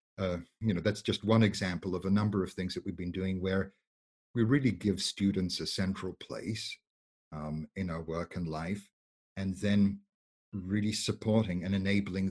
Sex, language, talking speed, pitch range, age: male, English, 175 wpm, 95-110 Hz, 50-69